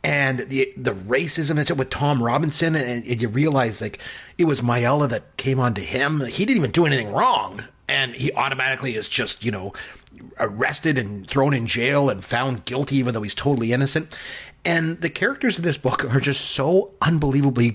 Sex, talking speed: male, 195 wpm